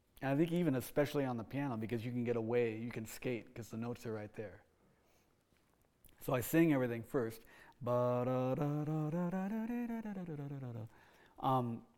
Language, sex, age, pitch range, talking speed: English, male, 40-59, 120-160 Hz, 135 wpm